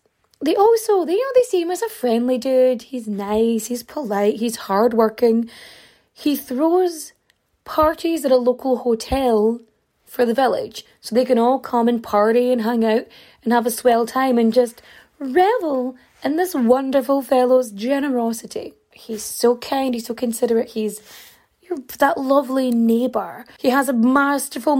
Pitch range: 225-280 Hz